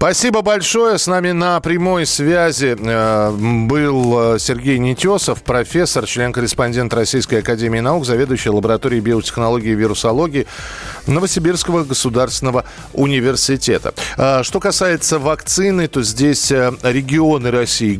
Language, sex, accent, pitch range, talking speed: Russian, male, native, 110-150 Hz, 100 wpm